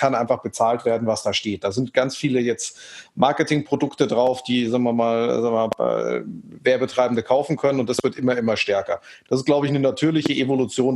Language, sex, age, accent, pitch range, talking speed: German, male, 40-59, German, 125-155 Hz, 205 wpm